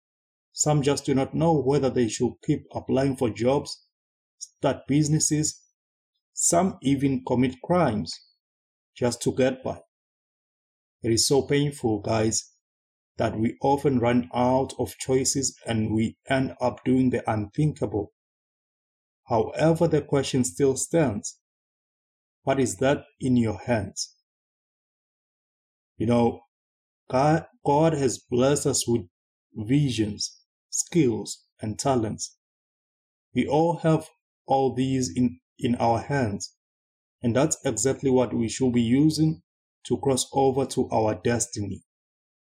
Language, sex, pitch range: English, male, 110-140 Hz